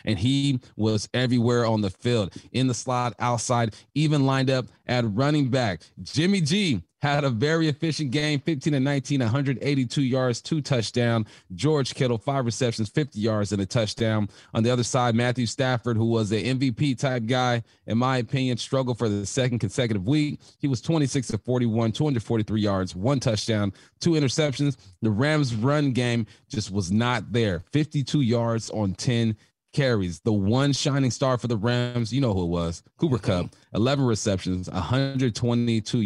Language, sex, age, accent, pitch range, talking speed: English, male, 30-49, American, 110-135 Hz, 165 wpm